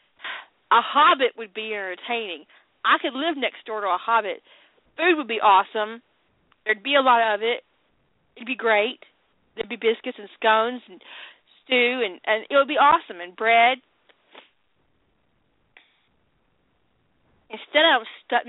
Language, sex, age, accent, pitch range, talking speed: English, female, 40-59, American, 190-265 Hz, 145 wpm